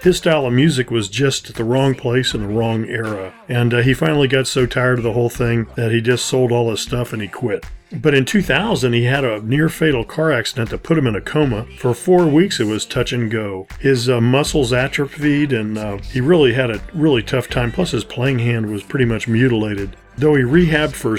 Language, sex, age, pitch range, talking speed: English, male, 40-59, 115-145 Hz, 240 wpm